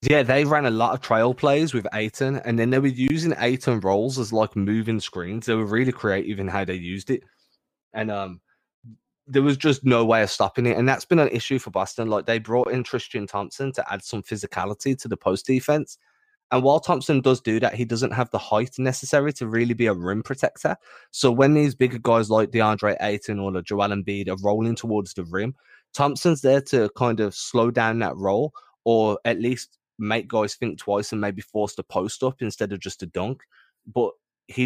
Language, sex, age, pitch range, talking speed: English, male, 20-39, 105-130 Hz, 215 wpm